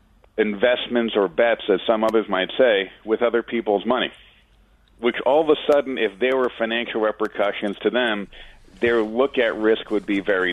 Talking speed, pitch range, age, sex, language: 175 wpm, 105-130 Hz, 50-69, male, English